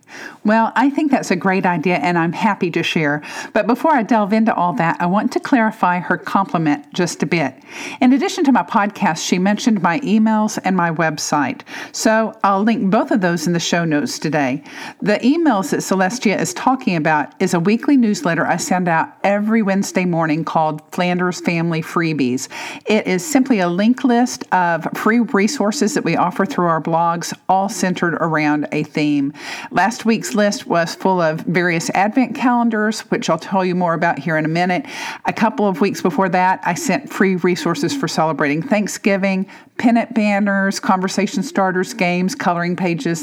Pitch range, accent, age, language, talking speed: 175-235 Hz, American, 50-69, English, 180 wpm